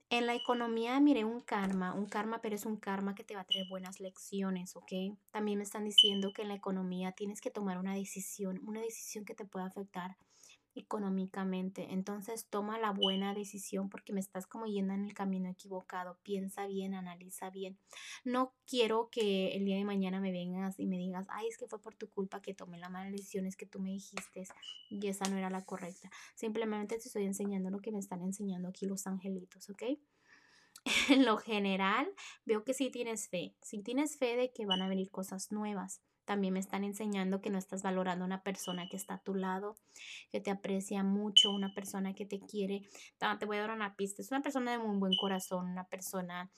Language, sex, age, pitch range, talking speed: Spanish, female, 20-39, 190-220 Hz, 210 wpm